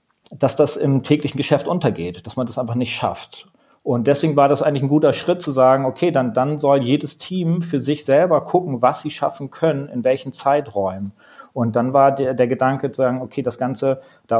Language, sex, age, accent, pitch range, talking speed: German, male, 40-59, German, 115-140 Hz, 215 wpm